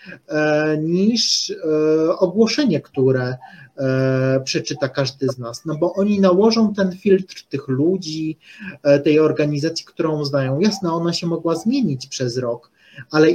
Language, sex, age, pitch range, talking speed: Polish, male, 30-49, 145-190 Hz, 120 wpm